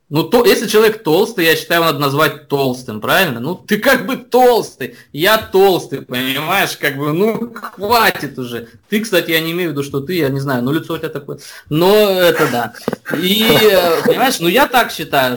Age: 20-39